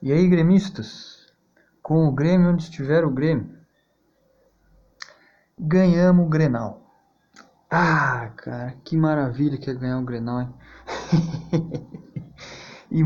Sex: male